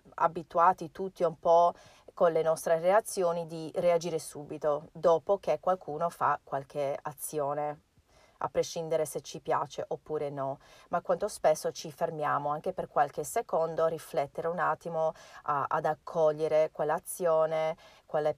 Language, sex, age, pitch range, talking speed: Italian, female, 40-59, 150-175 Hz, 135 wpm